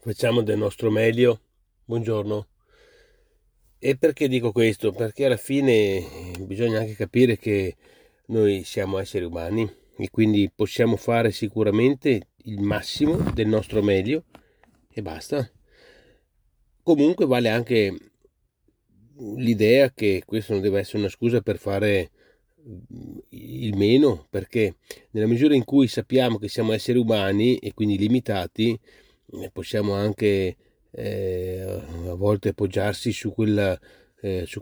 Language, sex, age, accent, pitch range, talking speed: Italian, male, 40-59, native, 100-135 Hz, 120 wpm